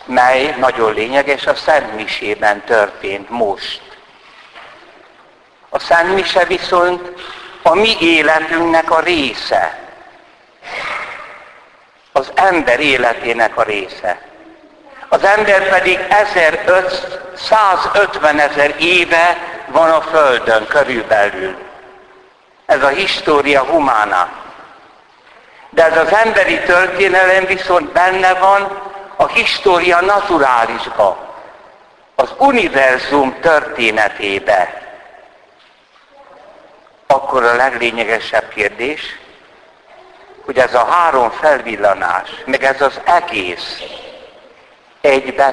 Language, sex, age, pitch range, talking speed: Hungarian, male, 60-79, 135-185 Hz, 80 wpm